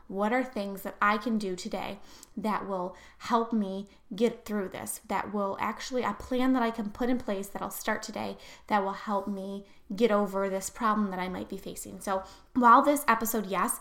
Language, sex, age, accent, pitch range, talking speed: English, female, 10-29, American, 200-235 Hz, 210 wpm